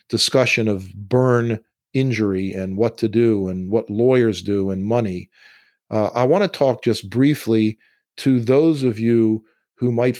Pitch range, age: 110-125 Hz, 50-69